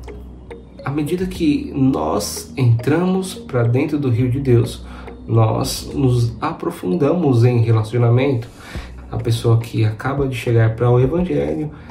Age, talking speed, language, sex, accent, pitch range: 30-49, 125 wpm, Portuguese, male, Brazilian, 110-145 Hz